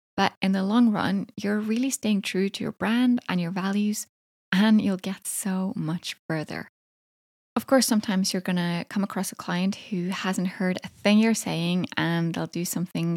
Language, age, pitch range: English, 10-29, 180-220 Hz